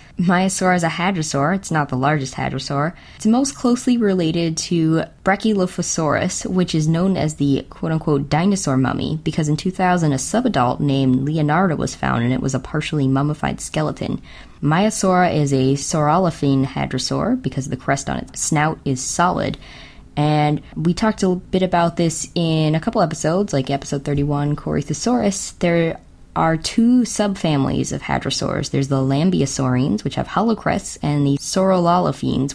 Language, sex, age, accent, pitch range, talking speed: English, female, 20-39, American, 140-180 Hz, 155 wpm